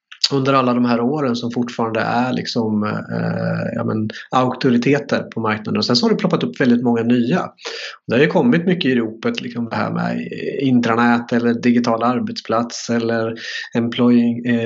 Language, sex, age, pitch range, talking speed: Swedish, male, 30-49, 120-150 Hz, 170 wpm